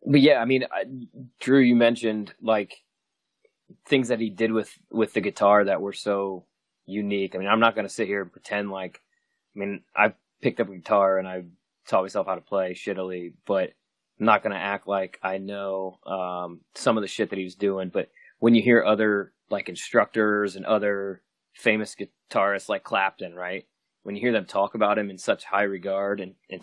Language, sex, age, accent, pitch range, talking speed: English, male, 20-39, American, 95-110 Hz, 205 wpm